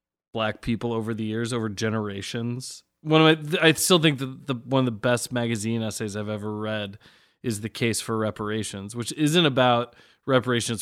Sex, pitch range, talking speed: male, 115-150 Hz, 185 wpm